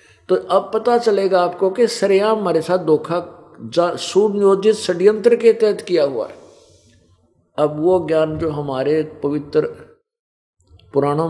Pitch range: 135-185 Hz